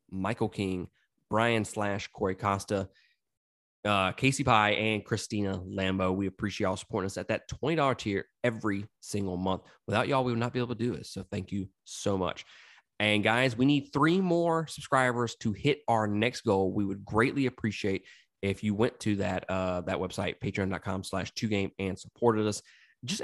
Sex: male